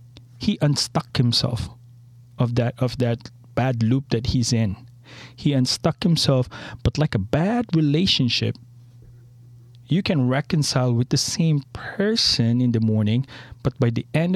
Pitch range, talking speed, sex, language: 120-130 Hz, 140 wpm, male, English